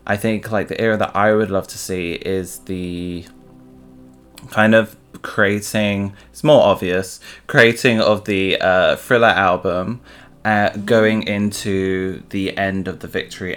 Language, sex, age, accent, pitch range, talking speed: English, male, 20-39, British, 90-105 Hz, 145 wpm